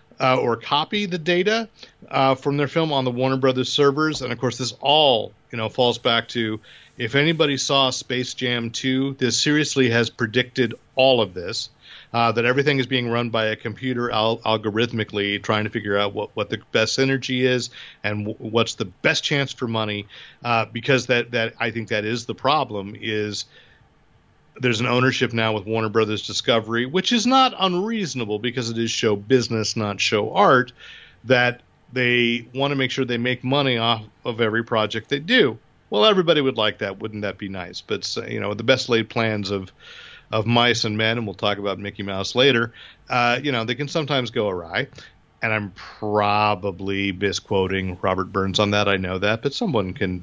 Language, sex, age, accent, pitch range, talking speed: English, male, 40-59, American, 110-130 Hz, 190 wpm